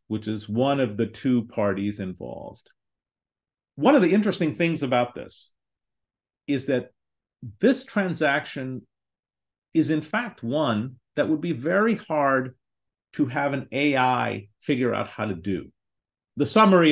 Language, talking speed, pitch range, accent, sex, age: English, 140 wpm, 110-130 Hz, American, male, 40-59